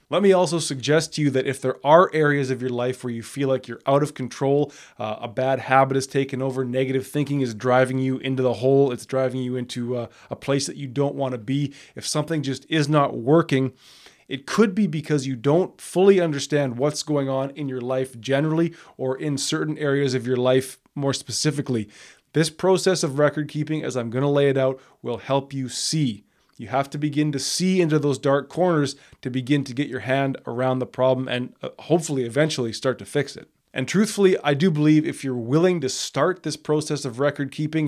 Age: 20-39